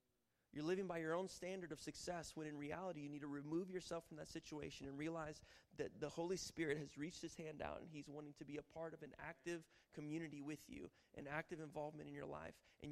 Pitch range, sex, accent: 145-165 Hz, male, American